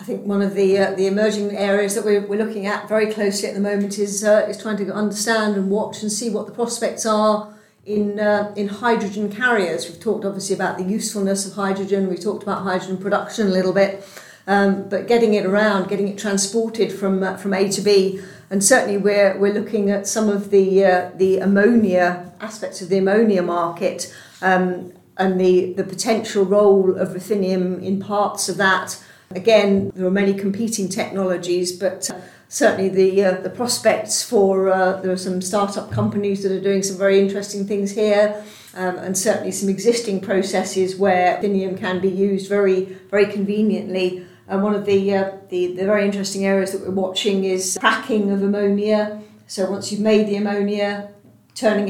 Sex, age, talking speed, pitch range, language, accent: female, 50-69, 190 wpm, 190-210 Hz, English, British